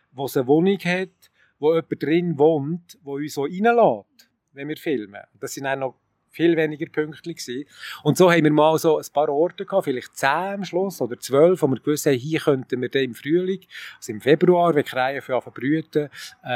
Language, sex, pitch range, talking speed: German, male, 130-165 Hz, 195 wpm